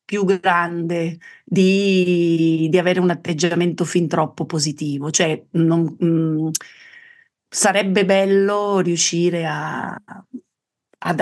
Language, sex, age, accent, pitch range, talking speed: Italian, female, 40-59, native, 155-185 Hz, 95 wpm